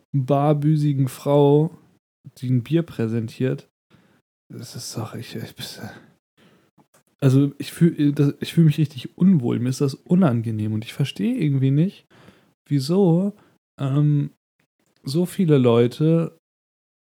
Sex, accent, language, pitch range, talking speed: male, German, German, 130-155 Hz, 110 wpm